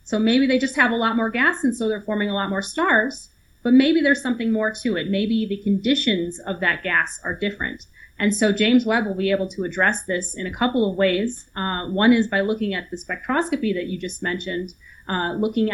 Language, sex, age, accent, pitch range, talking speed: English, female, 30-49, American, 190-225 Hz, 235 wpm